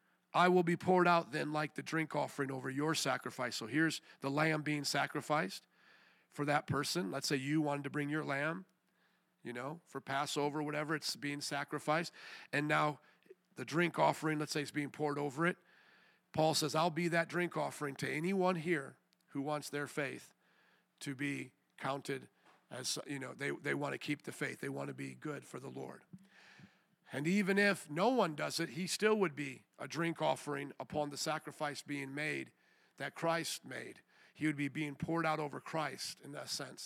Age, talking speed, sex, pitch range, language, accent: 40-59, 190 wpm, male, 145-195 Hz, English, American